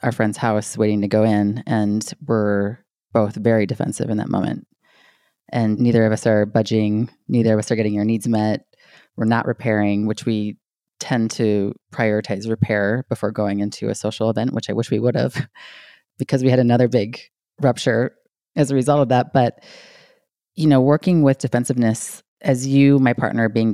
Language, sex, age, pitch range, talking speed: English, female, 20-39, 105-125 Hz, 180 wpm